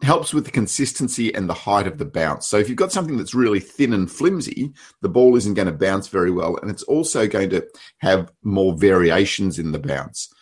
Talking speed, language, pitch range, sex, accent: 220 wpm, English, 85-115 Hz, male, Australian